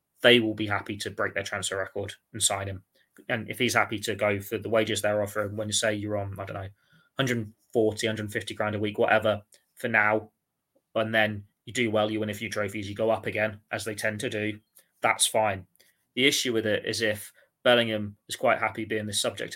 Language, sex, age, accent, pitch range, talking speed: English, male, 20-39, British, 100-110 Hz, 225 wpm